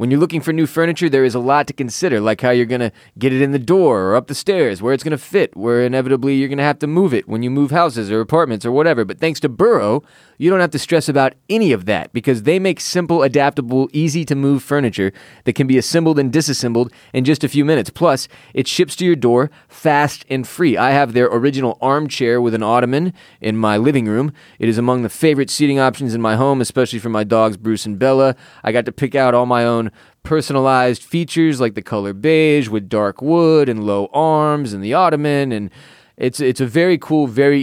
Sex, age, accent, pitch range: male, 20-39, American, 115-150 Hz